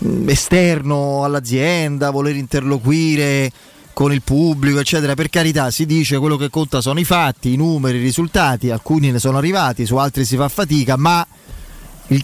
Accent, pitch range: native, 135-165 Hz